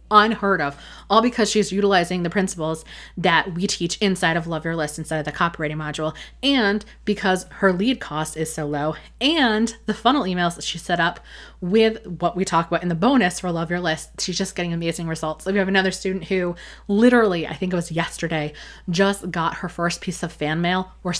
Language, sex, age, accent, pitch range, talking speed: English, female, 20-39, American, 165-200 Hz, 215 wpm